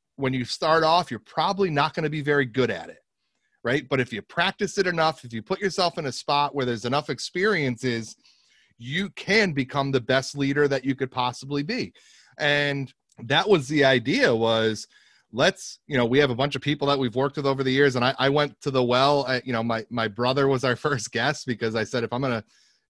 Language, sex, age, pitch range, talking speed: English, male, 30-49, 120-150 Hz, 230 wpm